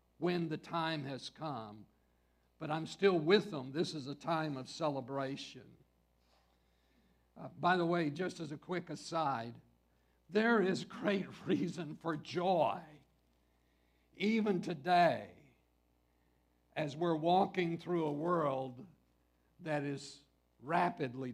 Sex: male